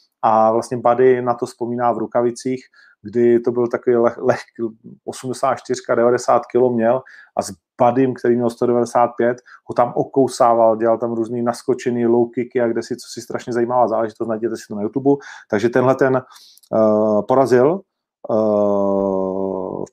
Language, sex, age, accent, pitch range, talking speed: Czech, male, 40-59, native, 110-135 Hz, 155 wpm